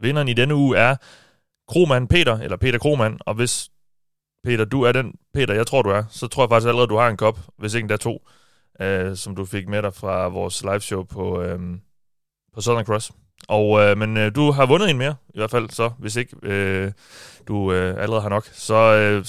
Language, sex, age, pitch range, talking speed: Danish, male, 30-49, 100-125 Hz, 220 wpm